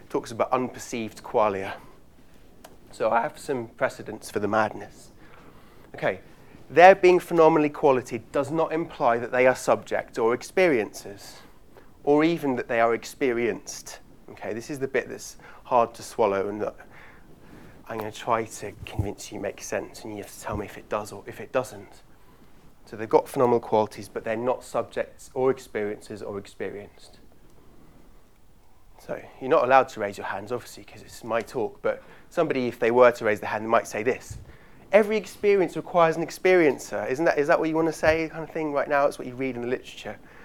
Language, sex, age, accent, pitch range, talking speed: English, male, 30-49, British, 115-160 Hz, 195 wpm